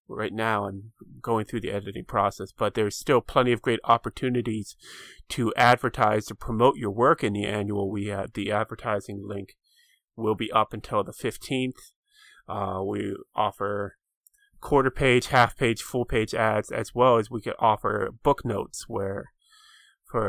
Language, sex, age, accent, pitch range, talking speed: English, male, 30-49, American, 105-125 Hz, 165 wpm